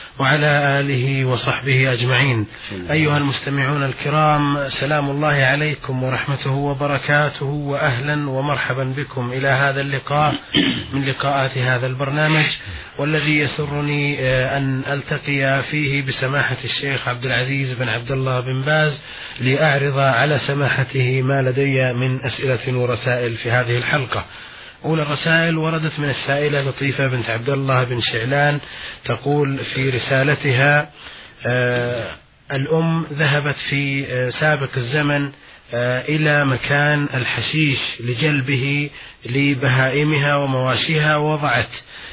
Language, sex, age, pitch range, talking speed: Arabic, male, 30-49, 130-145 Hz, 105 wpm